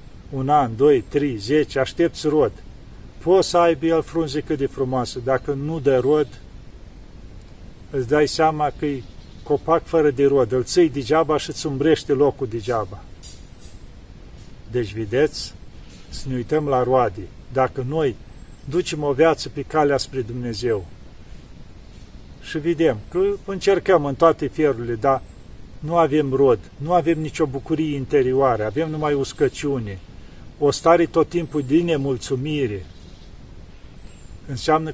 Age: 50-69